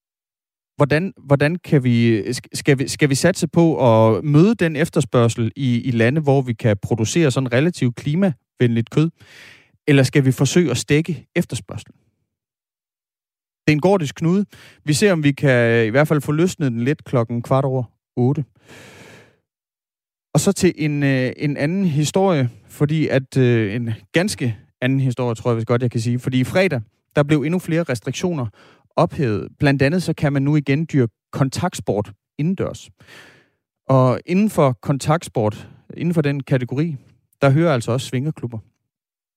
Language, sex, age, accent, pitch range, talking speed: Danish, male, 30-49, native, 120-150 Hz, 160 wpm